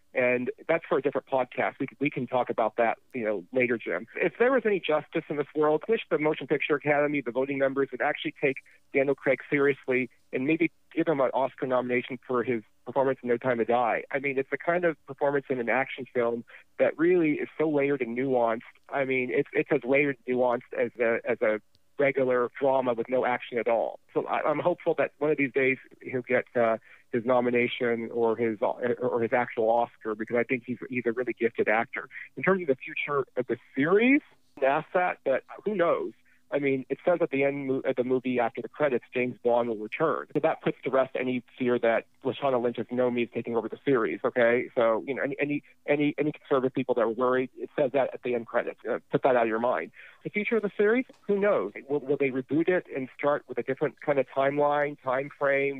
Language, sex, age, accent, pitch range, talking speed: English, male, 40-59, American, 125-145 Hz, 235 wpm